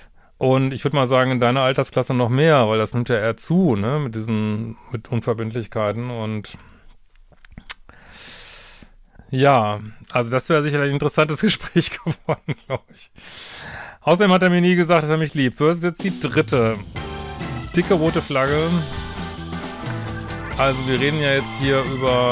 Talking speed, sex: 160 wpm, male